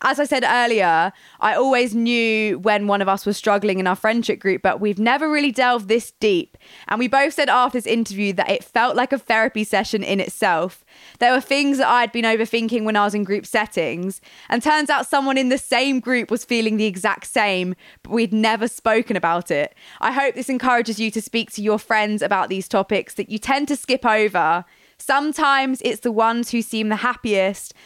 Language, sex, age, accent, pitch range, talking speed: English, female, 20-39, British, 200-255 Hz, 215 wpm